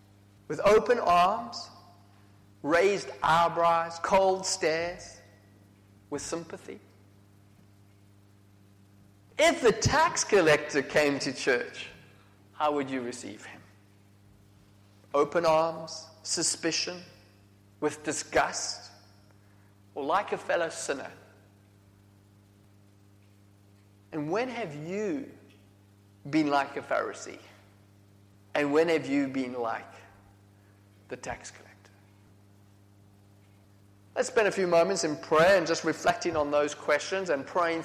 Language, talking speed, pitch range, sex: English, 100 wpm, 100-150 Hz, male